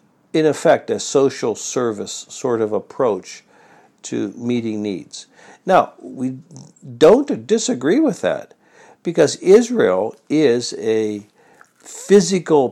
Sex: male